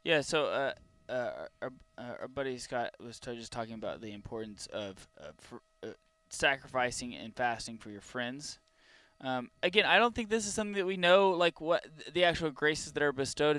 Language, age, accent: English, 20-39, American